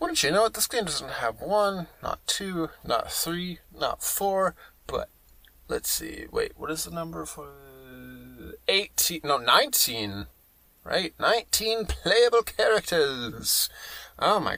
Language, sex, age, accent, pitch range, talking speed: English, male, 30-49, American, 120-180 Hz, 135 wpm